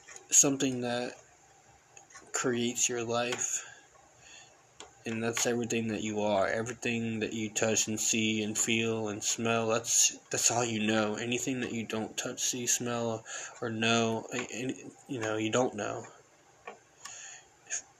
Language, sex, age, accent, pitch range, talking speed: English, male, 20-39, American, 110-120 Hz, 140 wpm